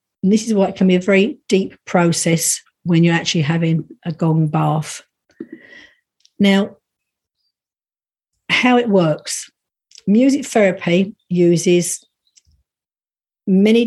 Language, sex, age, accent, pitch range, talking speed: English, female, 50-69, British, 175-210 Hz, 110 wpm